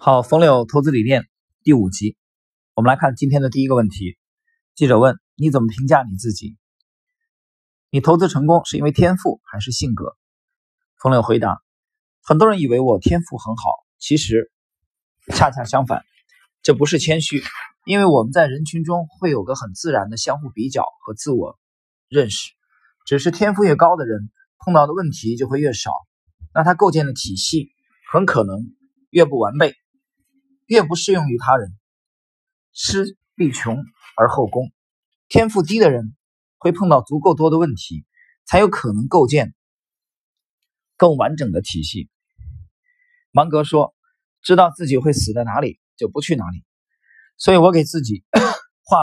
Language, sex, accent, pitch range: Chinese, male, native, 115-185 Hz